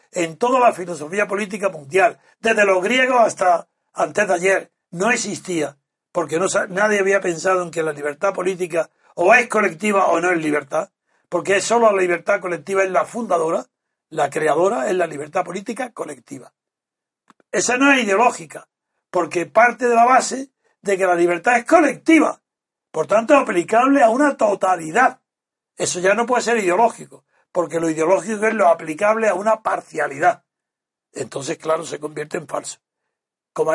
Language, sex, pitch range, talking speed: Spanish, male, 175-235 Hz, 165 wpm